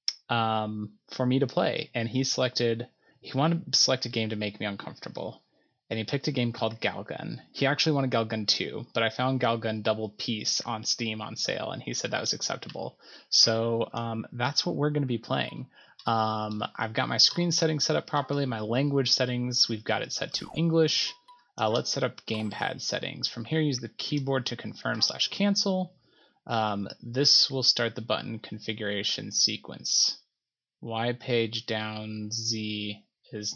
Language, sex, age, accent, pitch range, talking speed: English, male, 20-39, American, 110-130 Hz, 180 wpm